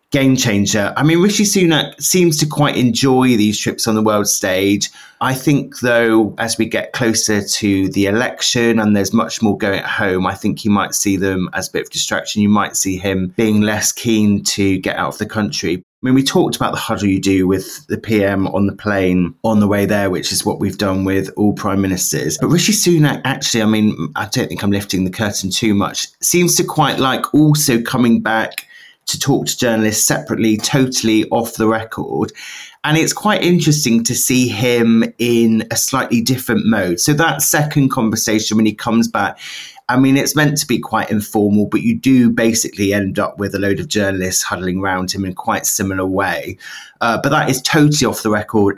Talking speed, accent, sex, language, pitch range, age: 210 wpm, British, male, English, 100-125 Hz, 30-49